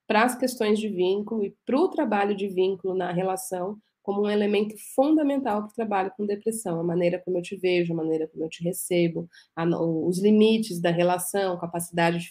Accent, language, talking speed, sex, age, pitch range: Brazilian, Portuguese, 195 wpm, female, 30-49, 175-215 Hz